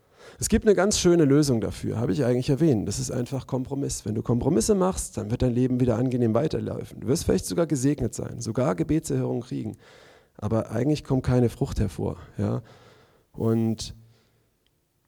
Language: German